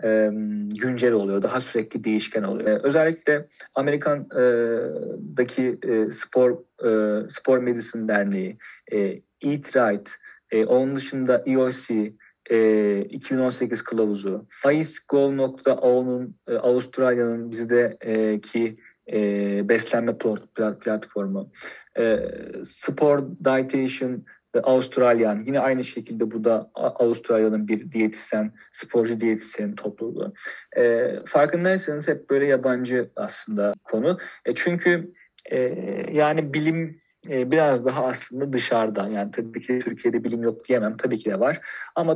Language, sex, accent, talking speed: Turkish, male, native, 115 wpm